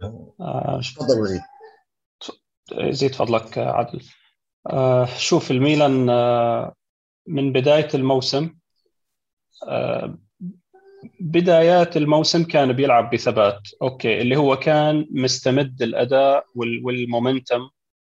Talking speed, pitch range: 65 wpm, 125-155 Hz